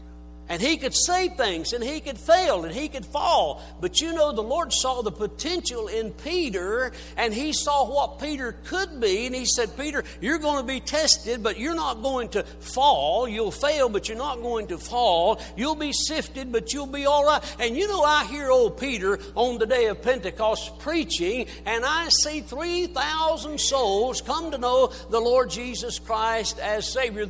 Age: 60-79